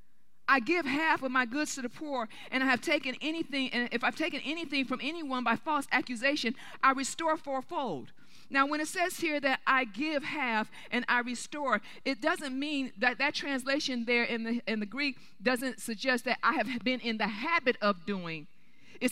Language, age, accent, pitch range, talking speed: English, 40-59, American, 230-280 Hz, 200 wpm